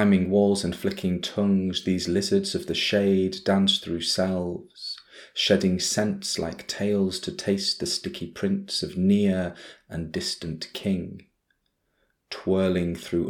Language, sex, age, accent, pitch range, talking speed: English, male, 30-49, British, 85-100 Hz, 130 wpm